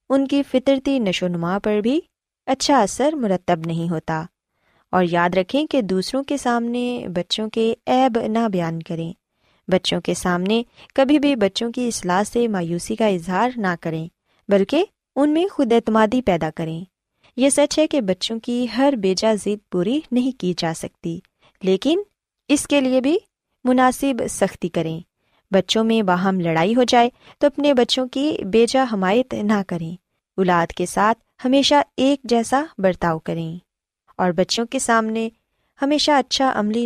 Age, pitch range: 20-39, 185-260 Hz